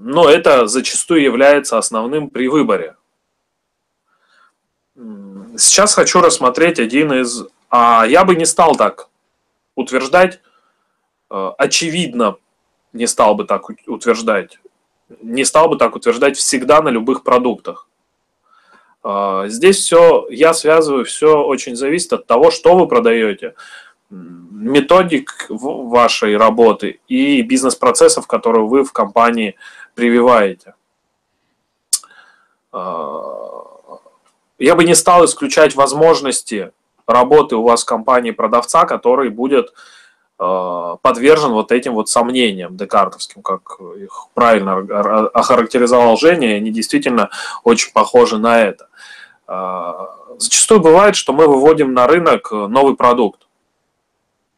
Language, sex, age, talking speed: Russian, male, 20-39, 105 wpm